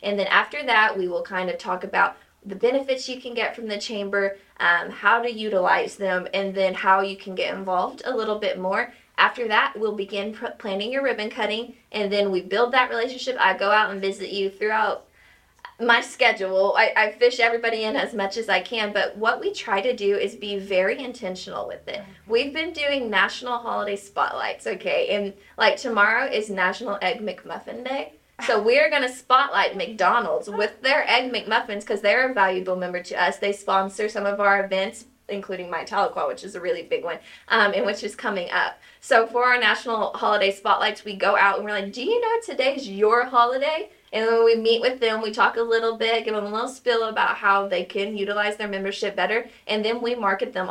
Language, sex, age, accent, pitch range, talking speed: English, female, 20-39, American, 195-245 Hz, 215 wpm